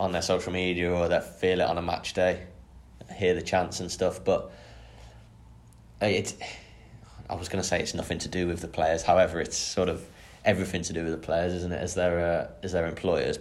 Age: 10-29